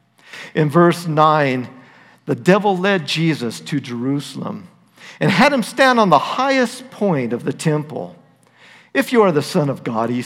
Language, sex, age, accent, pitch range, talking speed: English, male, 50-69, American, 145-230 Hz, 165 wpm